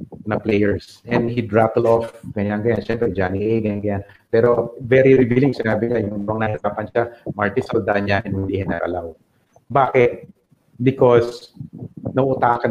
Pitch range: 115-155 Hz